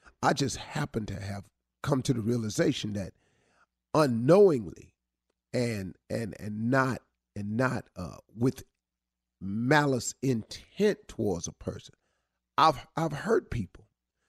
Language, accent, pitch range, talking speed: English, American, 115-160 Hz, 120 wpm